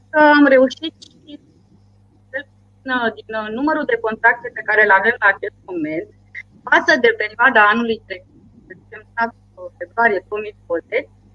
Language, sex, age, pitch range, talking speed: Romanian, female, 20-39, 195-280 Hz, 115 wpm